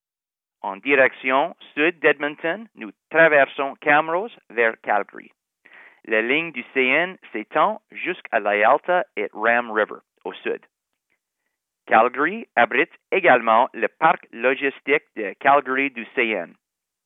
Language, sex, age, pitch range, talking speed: English, male, 40-59, 120-155 Hz, 115 wpm